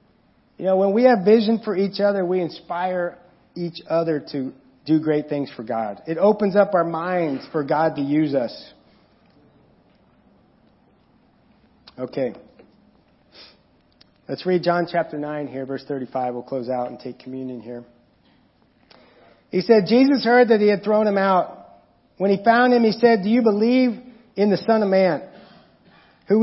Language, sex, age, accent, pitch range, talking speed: English, male, 40-59, American, 165-220 Hz, 160 wpm